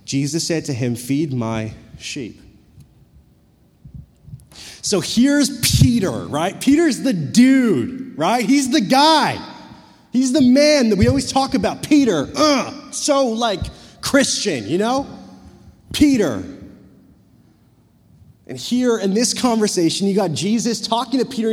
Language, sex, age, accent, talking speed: English, male, 30-49, American, 125 wpm